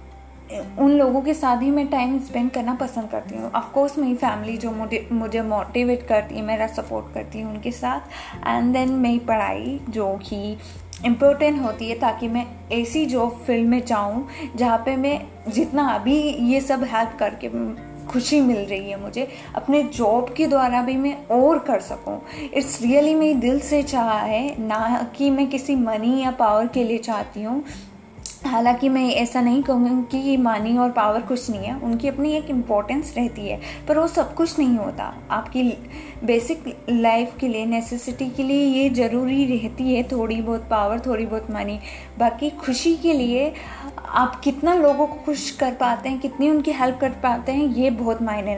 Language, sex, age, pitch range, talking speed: Hindi, female, 20-39, 225-275 Hz, 180 wpm